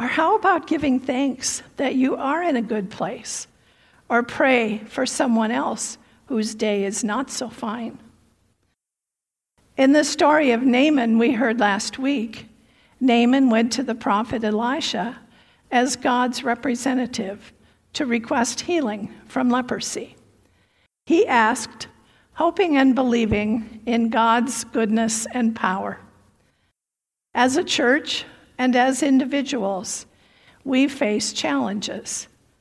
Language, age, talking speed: English, 50-69, 120 wpm